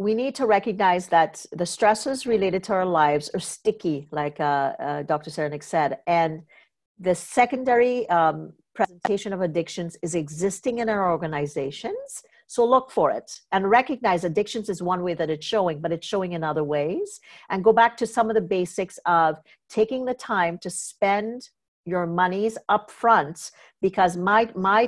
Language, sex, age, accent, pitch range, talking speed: English, female, 50-69, American, 165-220 Hz, 170 wpm